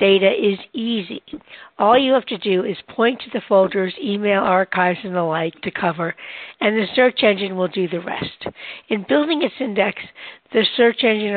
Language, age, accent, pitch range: English, 60-79, American, 185-225 Hz